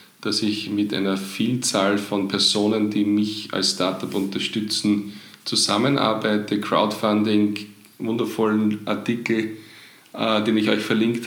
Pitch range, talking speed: 105-120 Hz, 110 wpm